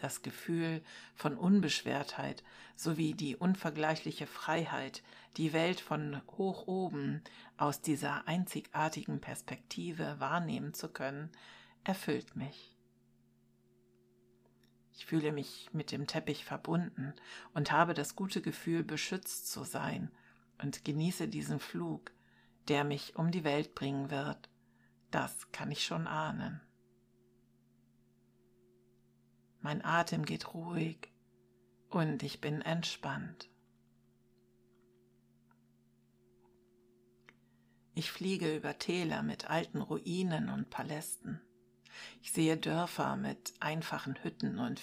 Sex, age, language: female, 60-79, German